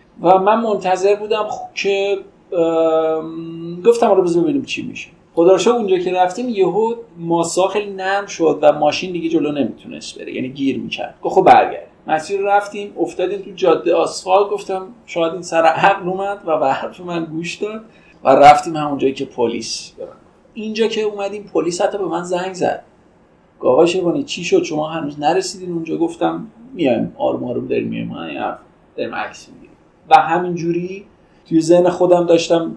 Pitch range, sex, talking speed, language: 155-200 Hz, male, 155 wpm, Persian